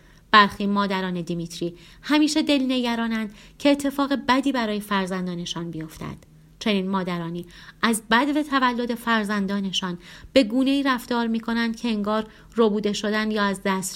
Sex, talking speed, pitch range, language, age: female, 135 wpm, 175-225 Hz, Persian, 30-49